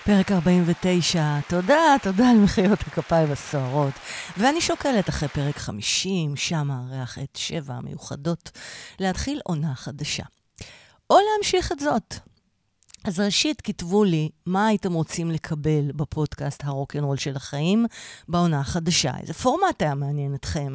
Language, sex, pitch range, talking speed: Hebrew, female, 145-185 Hz, 125 wpm